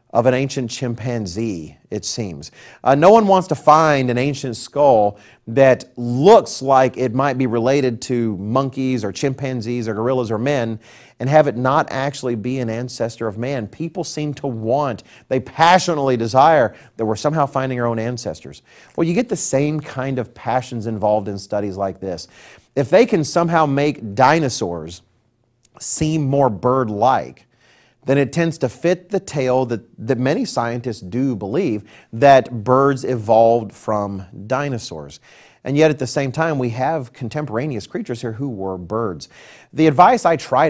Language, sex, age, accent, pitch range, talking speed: English, male, 40-59, American, 115-150 Hz, 165 wpm